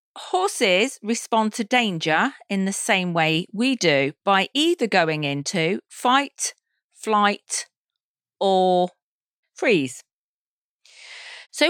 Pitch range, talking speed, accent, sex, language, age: 180-240 Hz, 95 wpm, British, female, English, 40-59